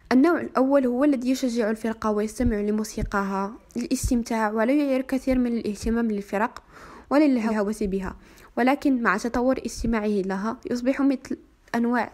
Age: 20-39